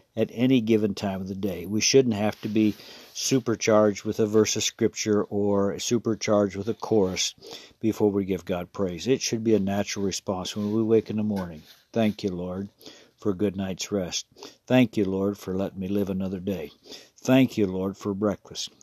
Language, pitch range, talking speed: English, 100-115 Hz, 195 wpm